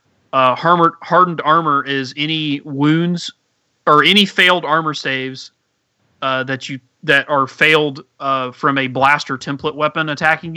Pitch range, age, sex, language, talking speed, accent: 130-150 Hz, 30-49, male, English, 140 wpm, American